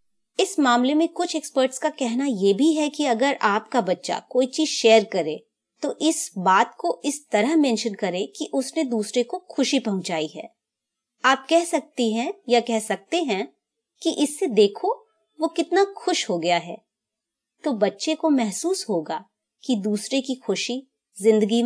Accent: native